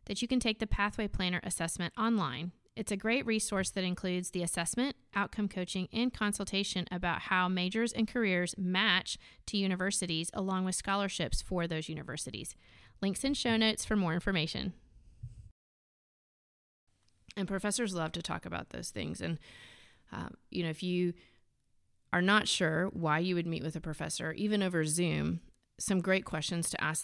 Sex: female